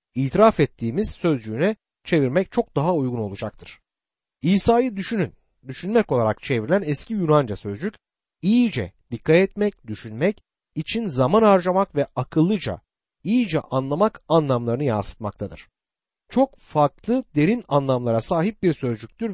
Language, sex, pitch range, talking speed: Turkish, male, 120-200 Hz, 110 wpm